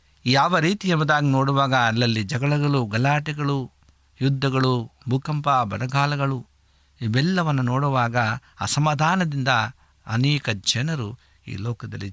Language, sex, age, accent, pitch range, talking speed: Kannada, male, 60-79, native, 100-140 Hz, 85 wpm